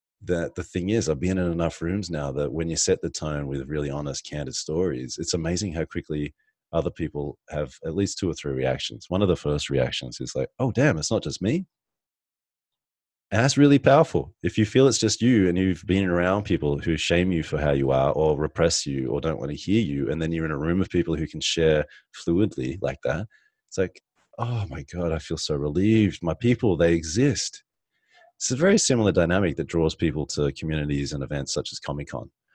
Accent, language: Australian, English